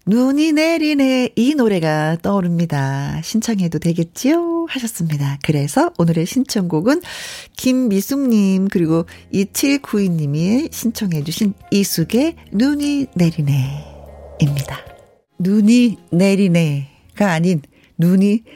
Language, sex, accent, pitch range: Korean, female, native, 165-245 Hz